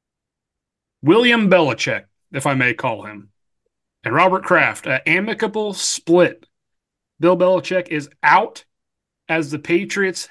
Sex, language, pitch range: male, English, 145-185 Hz